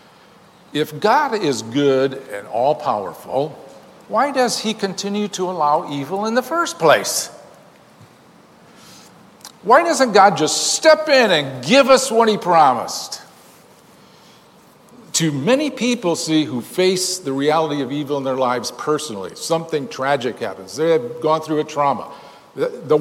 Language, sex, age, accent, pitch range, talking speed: English, male, 50-69, American, 150-220 Hz, 140 wpm